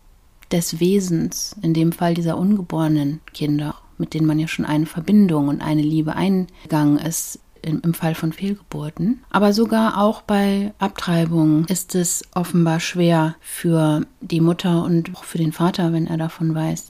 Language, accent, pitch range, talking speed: German, German, 165-195 Hz, 160 wpm